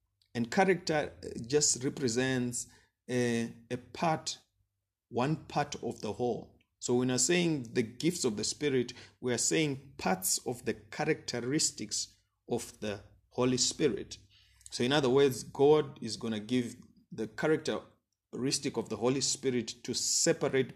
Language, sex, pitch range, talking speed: English, male, 105-135 Hz, 140 wpm